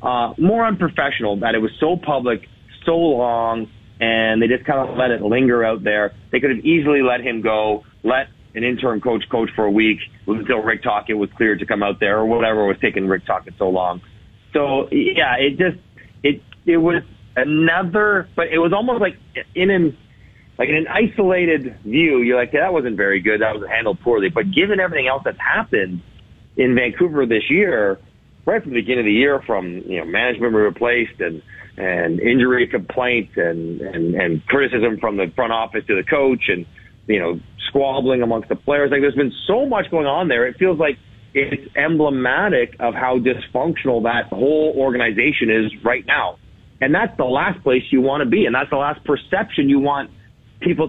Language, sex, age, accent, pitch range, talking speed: English, male, 40-59, American, 110-145 Hz, 195 wpm